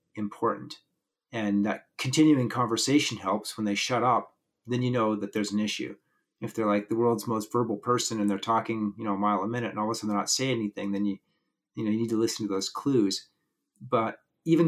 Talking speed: 230 wpm